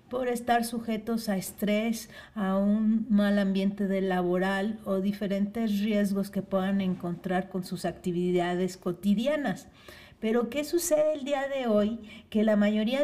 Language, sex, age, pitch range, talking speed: Spanish, female, 40-59, 185-220 Hz, 145 wpm